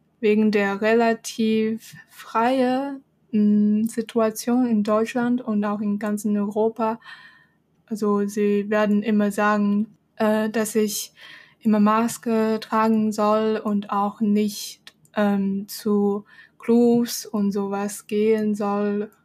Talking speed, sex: 105 wpm, female